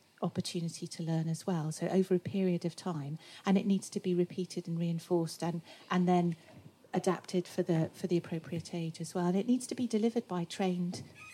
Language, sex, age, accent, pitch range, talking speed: English, female, 40-59, British, 170-190 Hz, 205 wpm